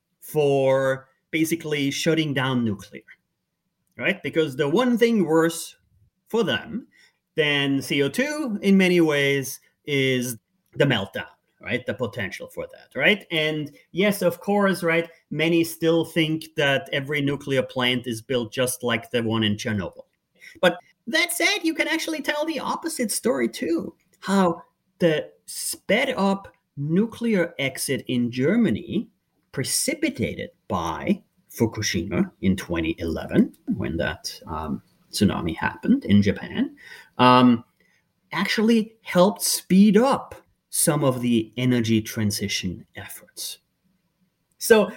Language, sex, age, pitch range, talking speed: English, male, 30-49, 130-205 Hz, 120 wpm